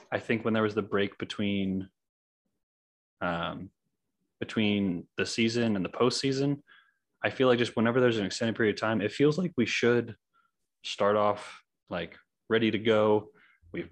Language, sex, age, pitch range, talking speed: English, male, 20-39, 100-110 Hz, 165 wpm